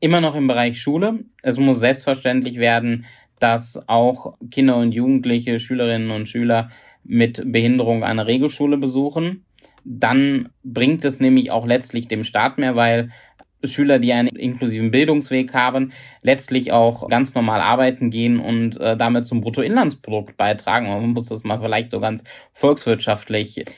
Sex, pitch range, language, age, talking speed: male, 115-135 Hz, German, 20-39, 145 wpm